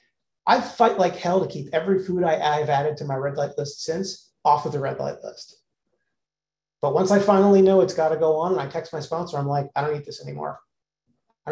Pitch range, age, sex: 145-185 Hz, 40-59, male